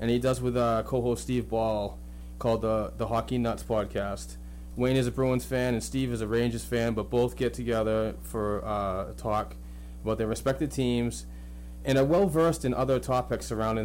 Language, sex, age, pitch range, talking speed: English, male, 30-49, 100-125 Hz, 190 wpm